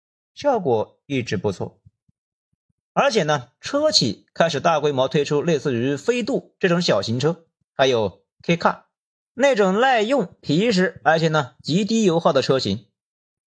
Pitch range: 135-200 Hz